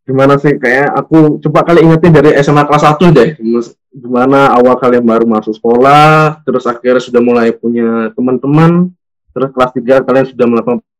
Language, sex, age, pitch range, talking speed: Indonesian, male, 20-39, 120-150 Hz, 165 wpm